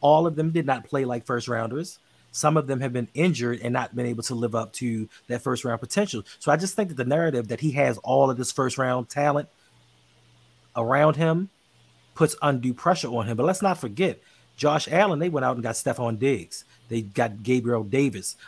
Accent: American